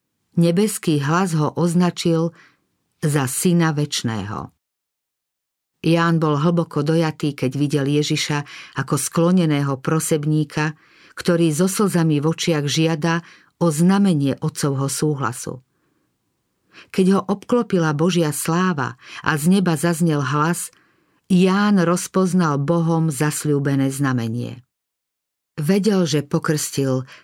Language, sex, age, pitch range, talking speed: Slovak, female, 50-69, 145-175 Hz, 100 wpm